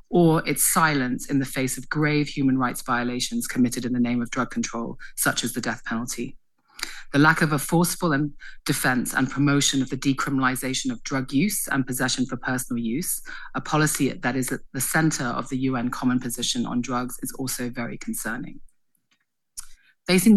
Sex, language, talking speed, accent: female, English, 180 wpm, British